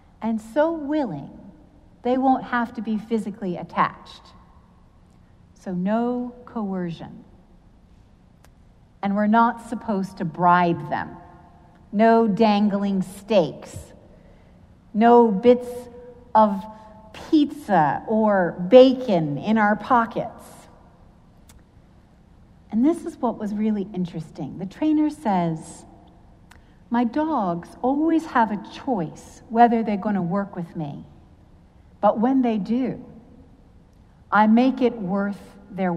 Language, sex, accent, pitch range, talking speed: English, female, American, 195-250 Hz, 105 wpm